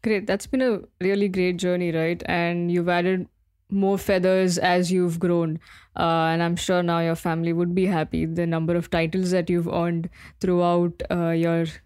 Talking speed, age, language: 180 wpm, 20-39, English